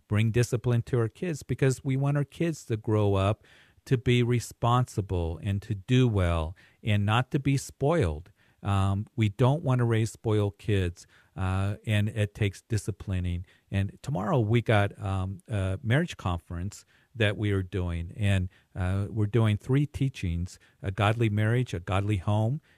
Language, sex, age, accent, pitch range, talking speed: English, male, 50-69, American, 95-120 Hz, 165 wpm